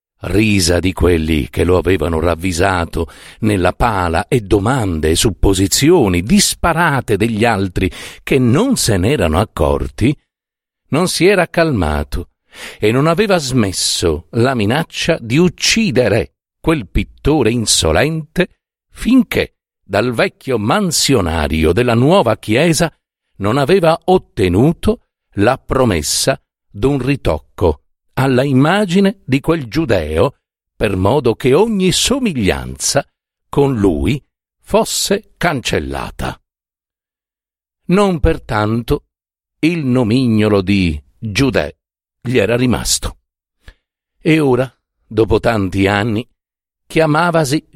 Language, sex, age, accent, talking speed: Italian, male, 50-69, native, 100 wpm